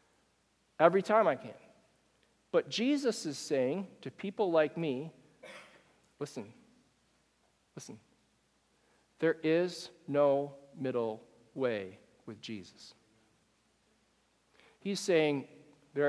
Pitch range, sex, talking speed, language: 165-260 Hz, male, 90 wpm, English